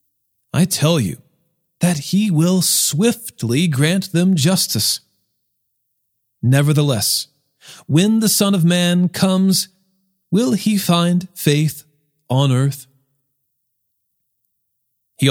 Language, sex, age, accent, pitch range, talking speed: English, male, 40-59, American, 125-185 Hz, 95 wpm